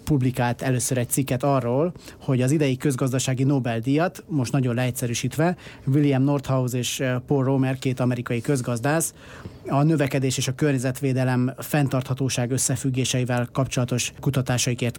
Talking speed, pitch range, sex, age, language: 120 wpm, 125-140 Hz, male, 30-49, Hungarian